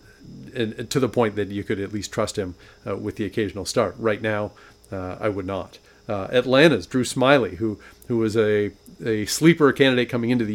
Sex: male